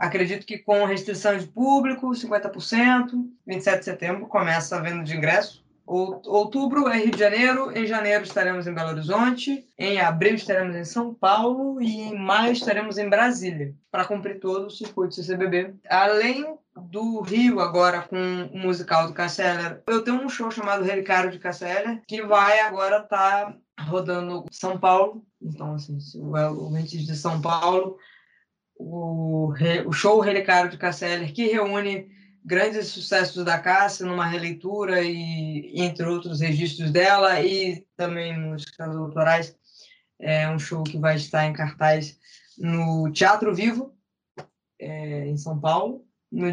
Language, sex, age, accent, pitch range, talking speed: Portuguese, female, 20-39, Brazilian, 170-210 Hz, 150 wpm